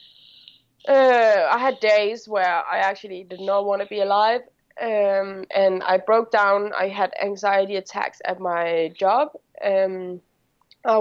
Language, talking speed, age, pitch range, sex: English, 145 wpm, 20-39, 185-210 Hz, female